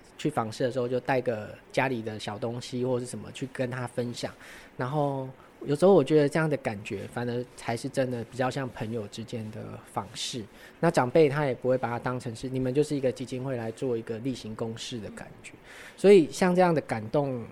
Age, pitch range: 20-39, 115-135 Hz